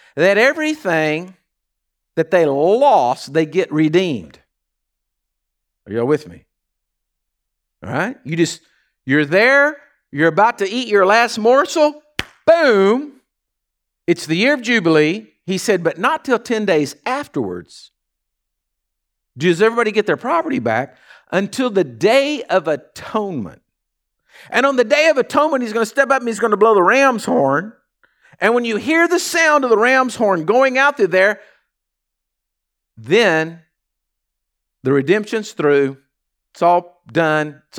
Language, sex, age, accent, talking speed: English, male, 50-69, American, 145 wpm